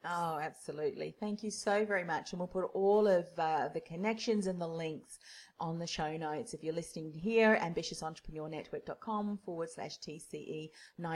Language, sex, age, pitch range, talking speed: English, female, 40-59, 165-210 Hz, 160 wpm